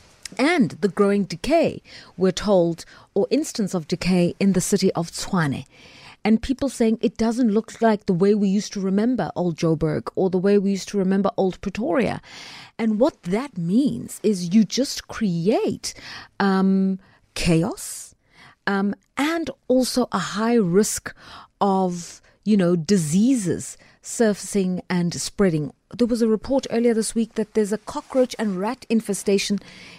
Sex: female